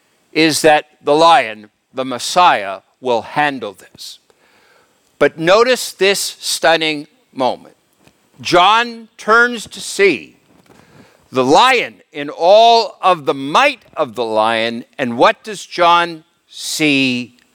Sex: male